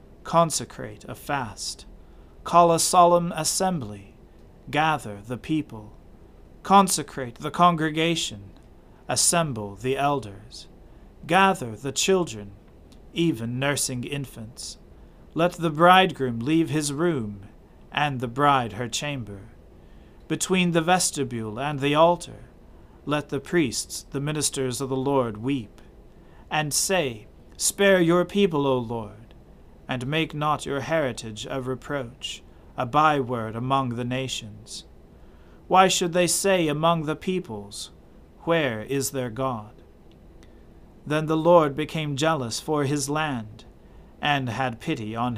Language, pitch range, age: English, 115-160 Hz, 40-59